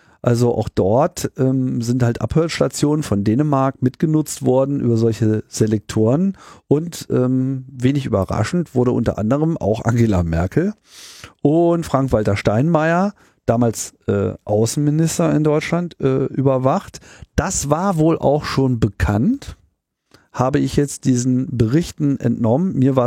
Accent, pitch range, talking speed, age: German, 105-145 Hz, 125 wpm, 50-69